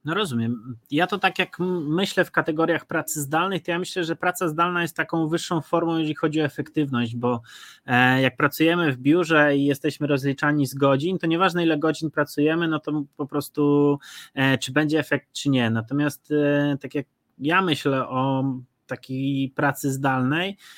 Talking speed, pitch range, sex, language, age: 170 wpm, 135-155 Hz, male, Polish, 20-39